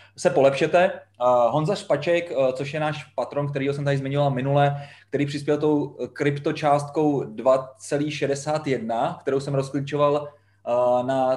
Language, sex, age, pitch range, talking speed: Czech, male, 20-39, 130-150 Hz, 115 wpm